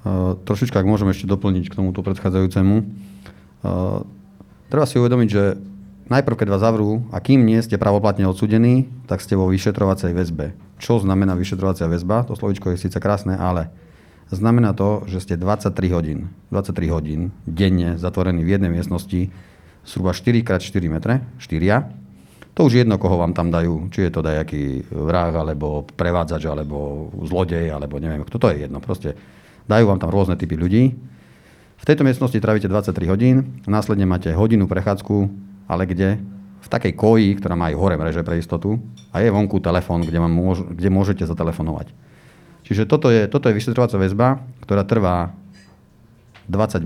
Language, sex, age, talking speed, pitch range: Slovak, male, 40-59, 160 wpm, 85-105 Hz